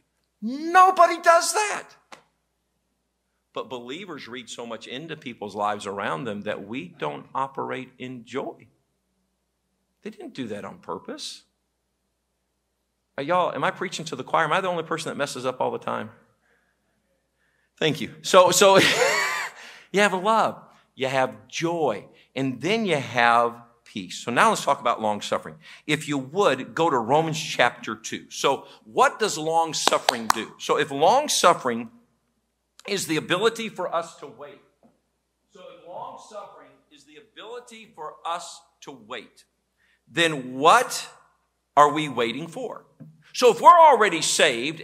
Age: 50-69